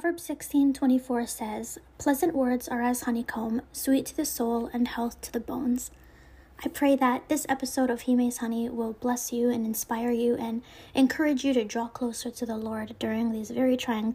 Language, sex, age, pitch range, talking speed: English, female, 20-39, 220-250 Hz, 195 wpm